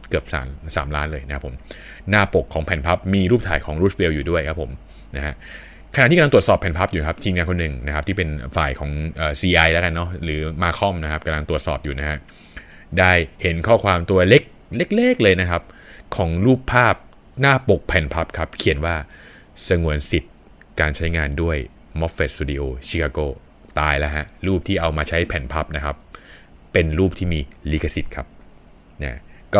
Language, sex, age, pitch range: Thai, male, 20-39, 75-90 Hz